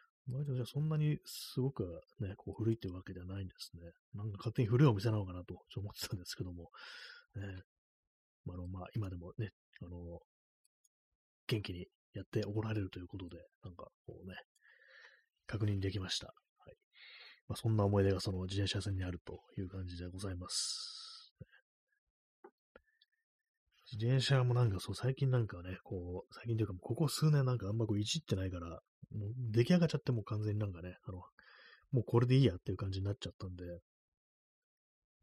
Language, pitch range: Japanese, 95-120 Hz